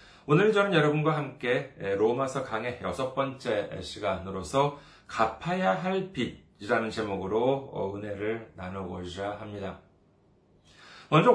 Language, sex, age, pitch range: Korean, male, 40-59, 110-185 Hz